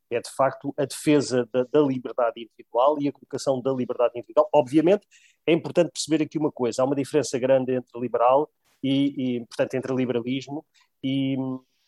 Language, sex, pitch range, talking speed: Portuguese, male, 125-150 Hz, 160 wpm